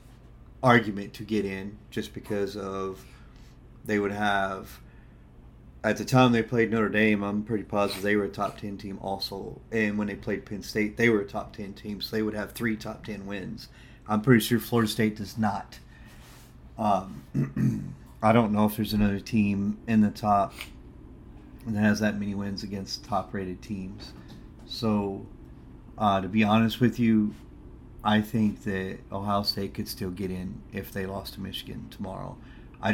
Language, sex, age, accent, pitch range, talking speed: English, male, 30-49, American, 95-110 Hz, 175 wpm